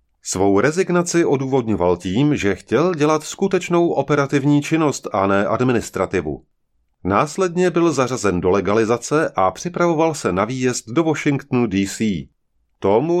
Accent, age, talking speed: native, 30-49, 125 wpm